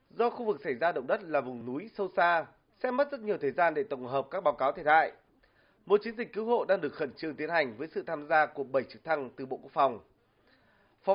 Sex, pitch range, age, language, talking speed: male, 155-220 Hz, 20-39, Vietnamese, 270 wpm